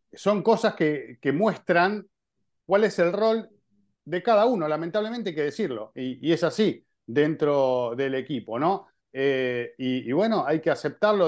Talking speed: 165 wpm